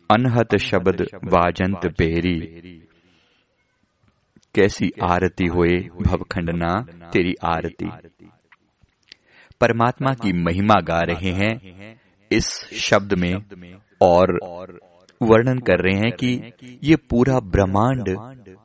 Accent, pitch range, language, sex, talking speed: native, 90-110 Hz, Hindi, male, 85 wpm